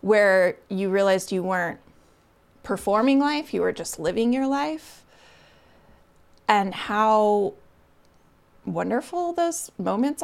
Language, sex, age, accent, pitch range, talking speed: English, female, 20-39, American, 185-240 Hz, 105 wpm